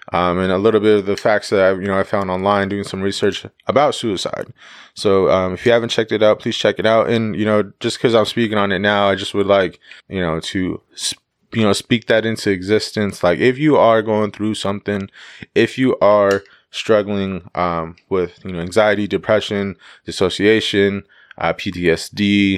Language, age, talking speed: English, 20-39, 200 wpm